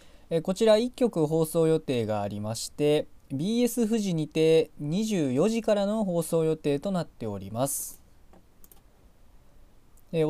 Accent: native